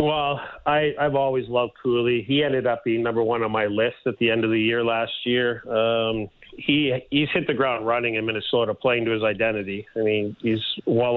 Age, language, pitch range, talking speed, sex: 40-59, English, 110-130 Hz, 215 wpm, male